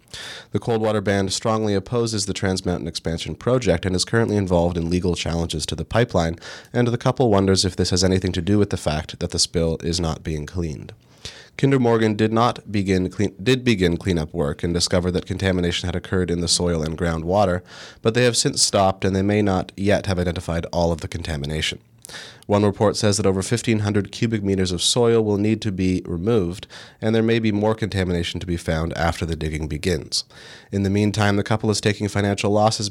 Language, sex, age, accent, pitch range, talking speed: English, male, 30-49, American, 85-105 Hz, 210 wpm